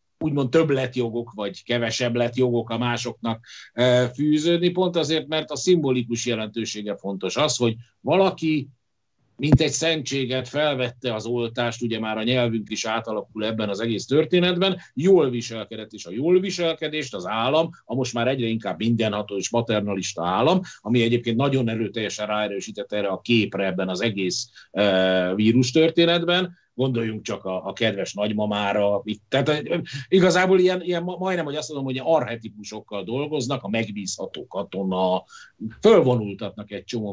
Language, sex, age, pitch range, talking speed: Hungarian, male, 50-69, 110-155 Hz, 145 wpm